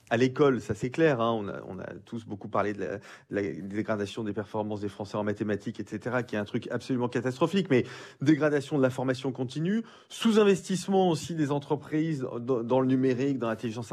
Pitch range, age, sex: 115-155 Hz, 30-49, male